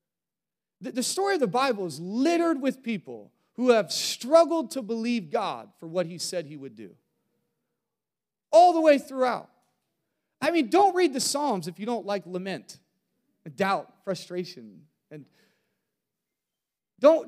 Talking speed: 140 wpm